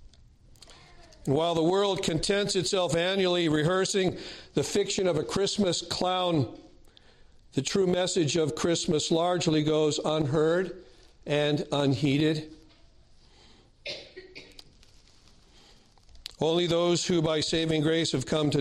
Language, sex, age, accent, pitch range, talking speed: English, male, 50-69, American, 145-180 Hz, 105 wpm